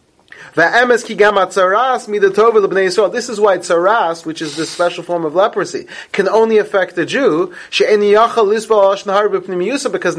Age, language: 30-49, English